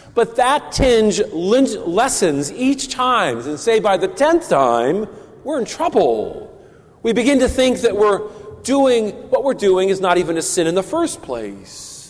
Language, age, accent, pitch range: English, 40-59, American, 180-245 Hz